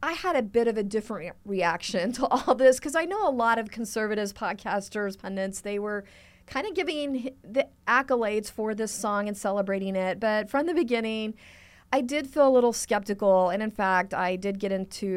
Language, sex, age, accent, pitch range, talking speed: English, female, 40-59, American, 200-255 Hz, 200 wpm